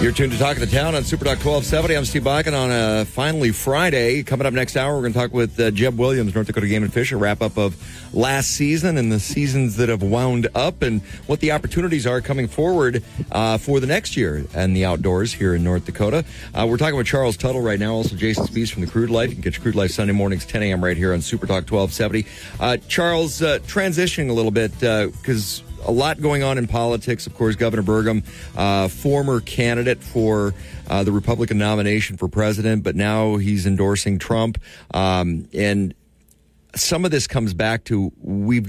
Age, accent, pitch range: 40-59, American, 100-130 Hz